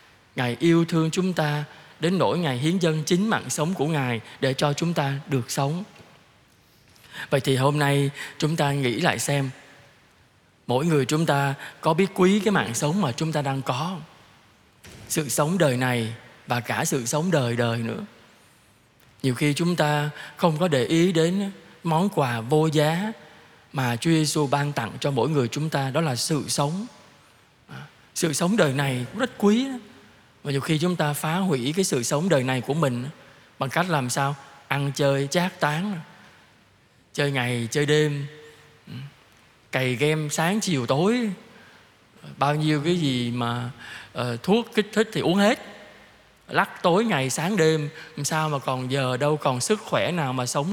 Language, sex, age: Vietnamese, male, 20-39